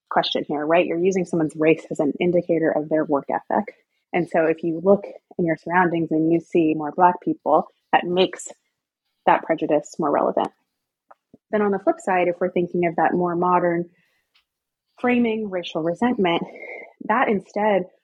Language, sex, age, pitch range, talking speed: English, female, 20-39, 165-195 Hz, 170 wpm